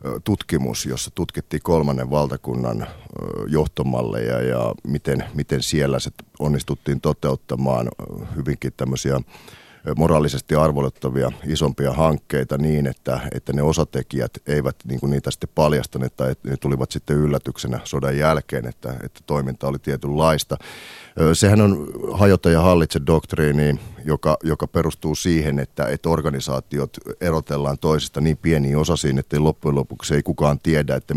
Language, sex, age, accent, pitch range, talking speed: Finnish, male, 30-49, native, 70-80 Hz, 125 wpm